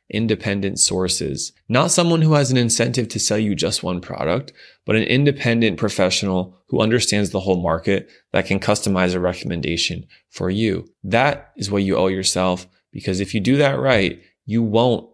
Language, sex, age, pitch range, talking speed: English, male, 20-39, 95-115 Hz, 175 wpm